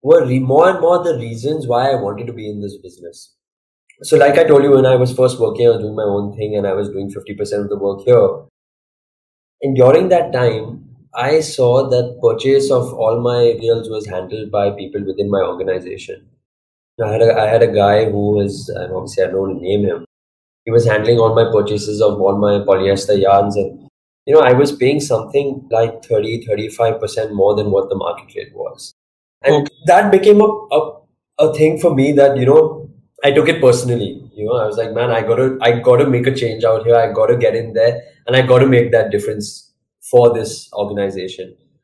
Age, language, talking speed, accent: 20-39, Hindi, 220 wpm, native